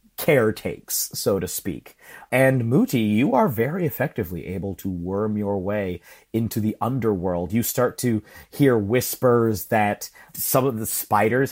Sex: male